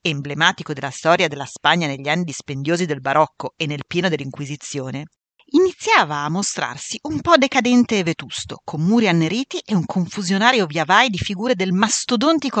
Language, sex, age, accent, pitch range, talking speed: Italian, female, 40-59, native, 150-235 Hz, 155 wpm